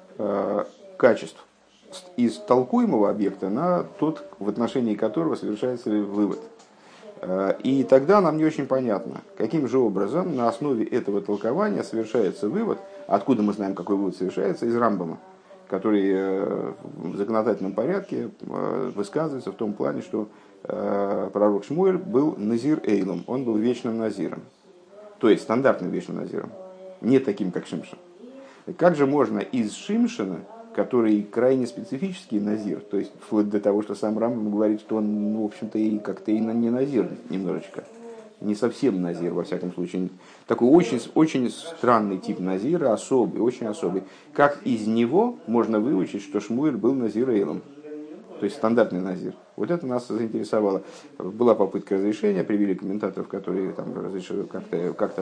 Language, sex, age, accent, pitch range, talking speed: Russian, male, 50-69, native, 105-155 Hz, 140 wpm